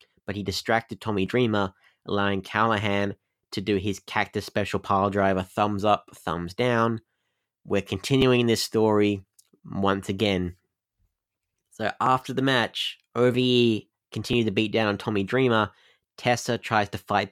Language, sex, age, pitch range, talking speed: English, male, 20-39, 100-115 Hz, 140 wpm